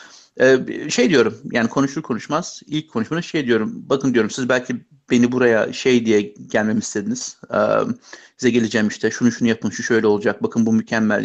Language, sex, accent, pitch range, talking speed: Turkish, male, native, 120-155 Hz, 170 wpm